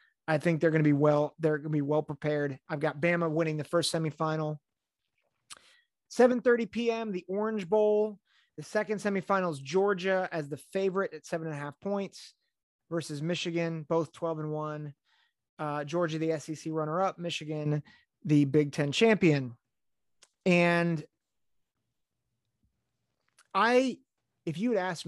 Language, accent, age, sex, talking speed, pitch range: English, American, 30-49, male, 145 wpm, 145-180 Hz